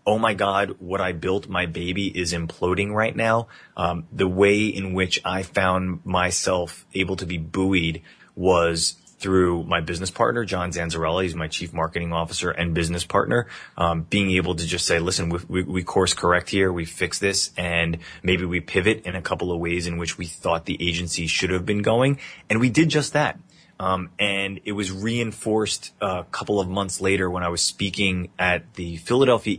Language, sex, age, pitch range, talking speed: English, male, 30-49, 85-100 Hz, 195 wpm